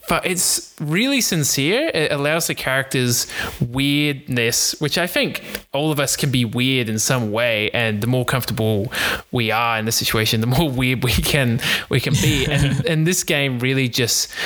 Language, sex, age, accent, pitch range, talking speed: English, male, 20-39, Australian, 115-160 Hz, 185 wpm